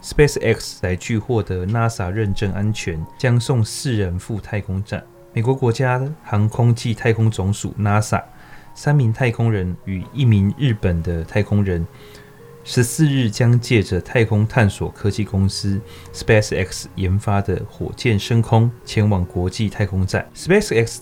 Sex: male